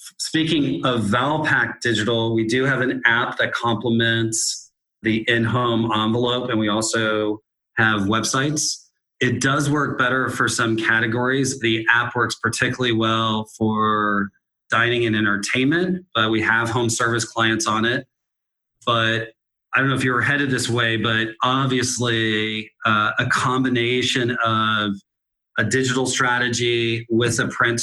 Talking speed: 140 wpm